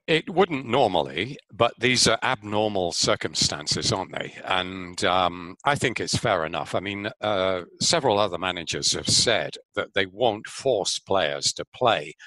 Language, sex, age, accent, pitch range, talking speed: English, male, 50-69, British, 110-165 Hz, 155 wpm